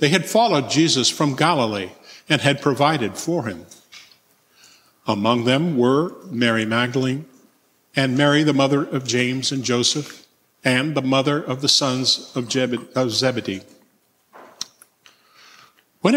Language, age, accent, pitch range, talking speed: English, 50-69, American, 125-155 Hz, 125 wpm